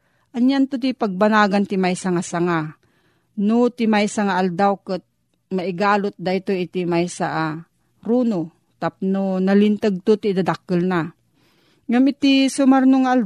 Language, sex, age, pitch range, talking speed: Filipino, female, 40-59, 175-230 Hz, 125 wpm